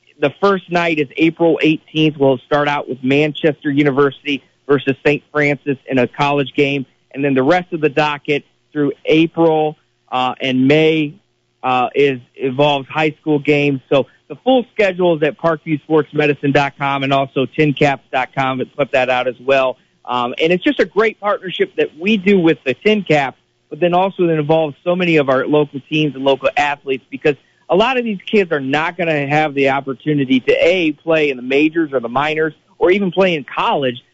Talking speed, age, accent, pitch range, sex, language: 190 wpm, 40-59, American, 135-165 Hz, male, English